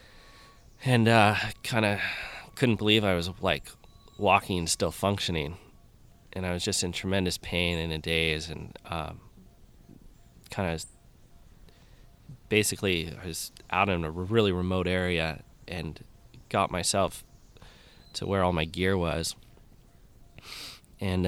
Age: 20-39